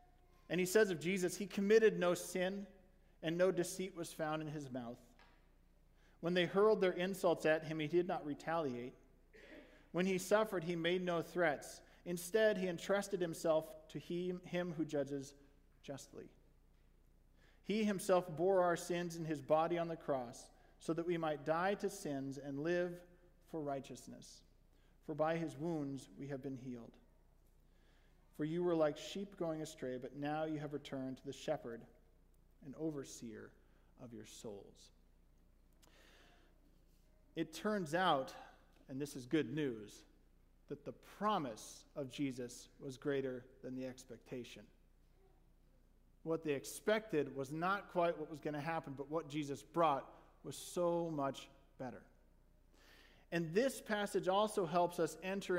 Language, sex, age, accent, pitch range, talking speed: English, male, 40-59, American, 140-175 Hz, 150 wpm